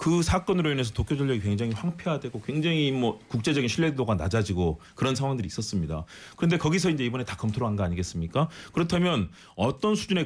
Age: 30-49